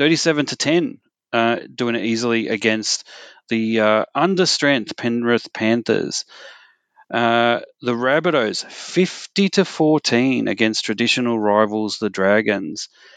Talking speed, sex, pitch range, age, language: 110 wpm, male, 110-130 Hz, 30-49, English